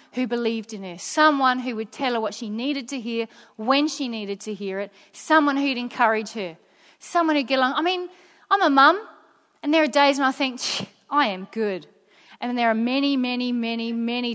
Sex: female